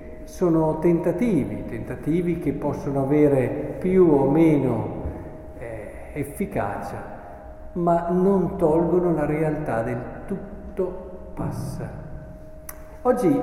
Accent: native